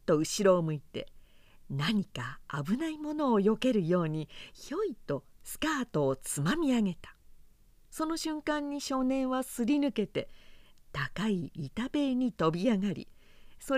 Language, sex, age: Japanese, female, 50-69